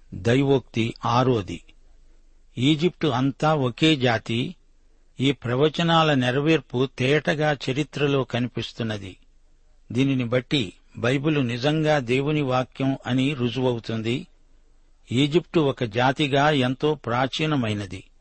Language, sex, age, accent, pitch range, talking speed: Telugu, male, 60-79, native, 125-150 Hz, 80 wpm